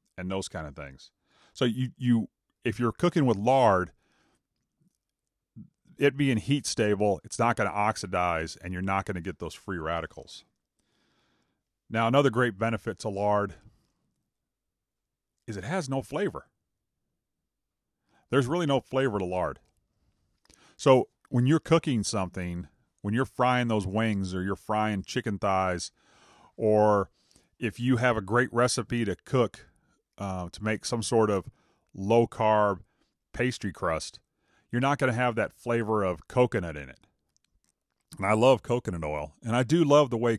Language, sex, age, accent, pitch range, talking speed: English, male, 40-59, American, 95-125 Hz, 150 wpm